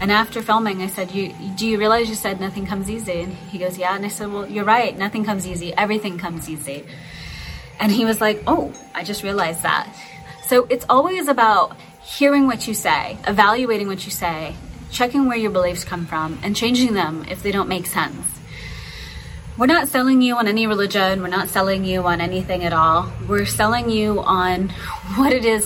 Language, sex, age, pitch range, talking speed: English, female, 20-39, 175-215 Hz, 200 wpm